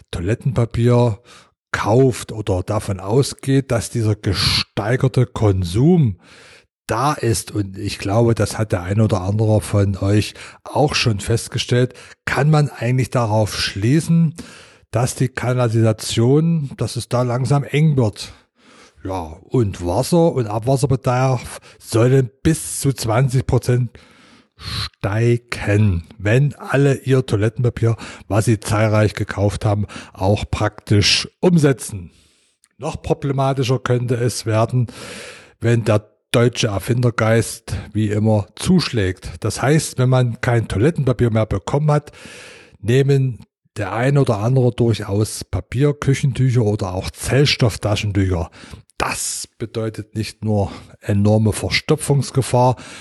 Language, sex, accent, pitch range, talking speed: German, male, German, 105-130 Hz, 110 wpm